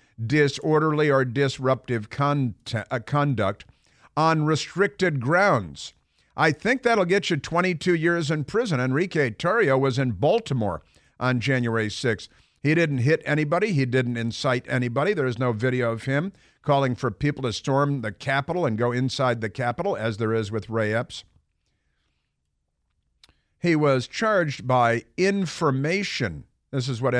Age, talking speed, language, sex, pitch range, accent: 50-69, 140 wpm, English, male, 110-150 Hz, American